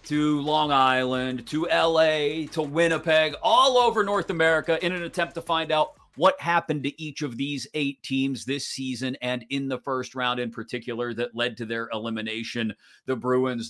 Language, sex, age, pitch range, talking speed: English, male, 40-59, 115-150 Hz, 180 wpm